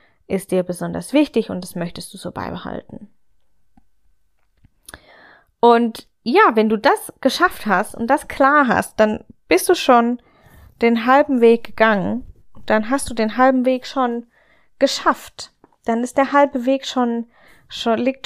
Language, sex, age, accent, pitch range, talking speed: German, female, 10-29, German, 210-270 Hz, 150 wpm